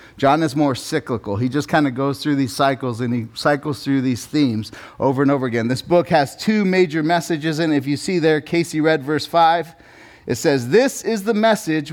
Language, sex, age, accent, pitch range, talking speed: English, male, 30-49, American, 110-150 Hz, 220 wpm